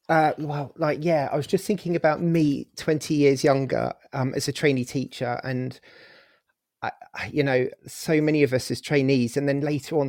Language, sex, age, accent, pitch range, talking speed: English, male, 30-49, British, 125-145 Hz, 190 wpm